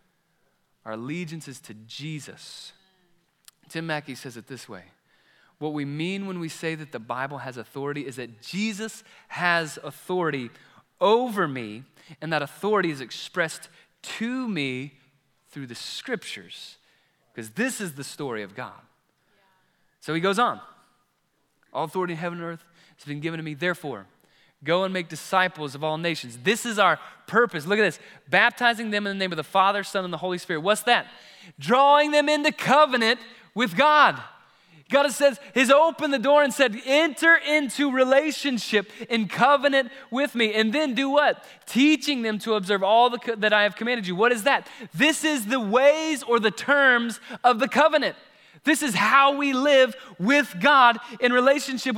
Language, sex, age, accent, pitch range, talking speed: English, male, 30-49, American, 160-260 Hz, 170 wpm